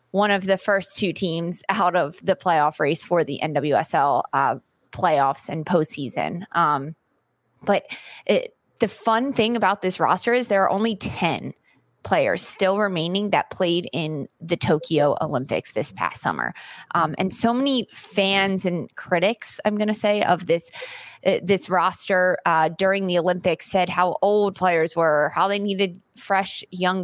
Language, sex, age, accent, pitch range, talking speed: English, female, 20-39, American, 165-195 Hz, 165 wpm